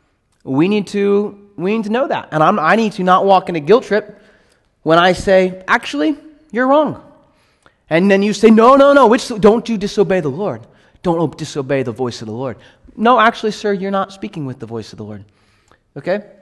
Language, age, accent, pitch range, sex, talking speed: English, 30-49, American, 175-225 Hz, male, 210 wpm